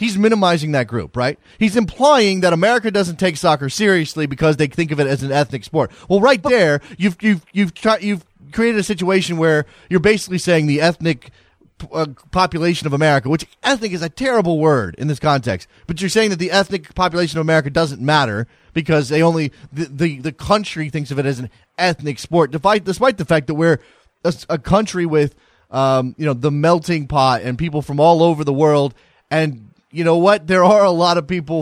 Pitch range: 140-185 Hz